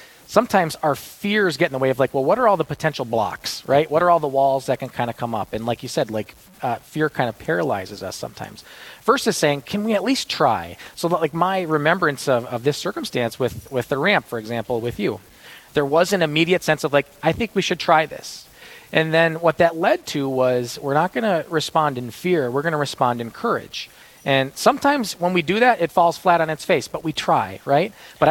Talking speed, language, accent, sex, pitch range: 235 wpm, English, American, male, 130-175 Hz